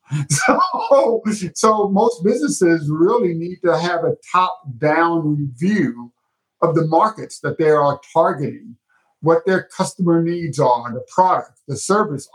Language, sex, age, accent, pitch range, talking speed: English, male, 50-69, American, 145-185 Hz, 130 wpm